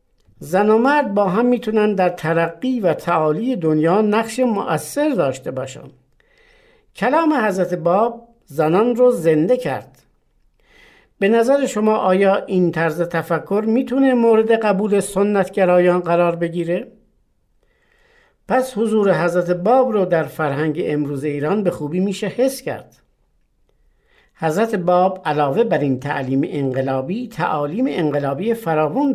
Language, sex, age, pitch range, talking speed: Persian, male, 60-79, 165-235 Hz, 120 wpm